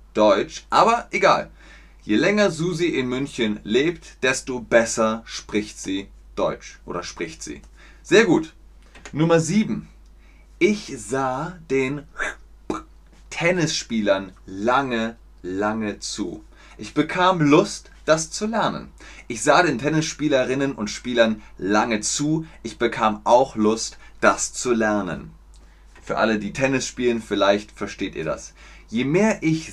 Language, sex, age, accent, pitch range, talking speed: German, male, 30-49, German, 100-150 Hz, 125 wpm